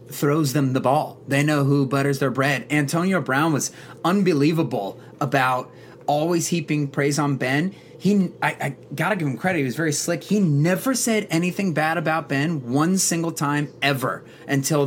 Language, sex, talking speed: English, male, 175 wpm